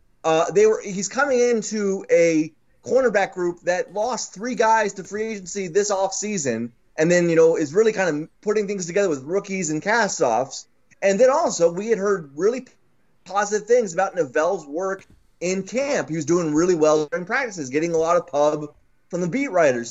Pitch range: 160-205 Hz